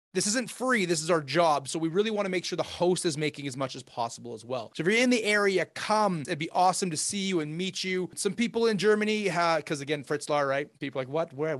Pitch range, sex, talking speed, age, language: 150-205 Hz, male, 270 wpm, 30-49, English